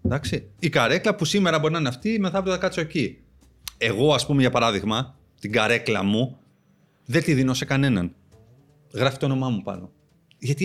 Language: Greek